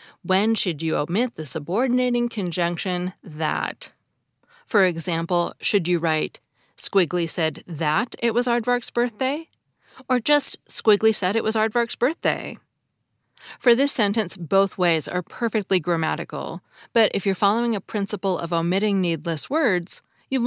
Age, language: 30-49, English